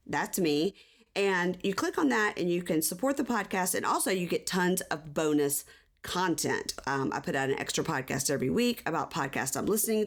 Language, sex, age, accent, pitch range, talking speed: English, female, 40-59, American, 145-205 Hz, 205 wpm